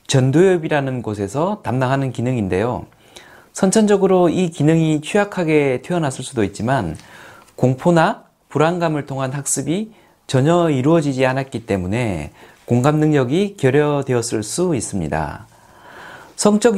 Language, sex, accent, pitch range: Korean, male, native, 130-185 Hz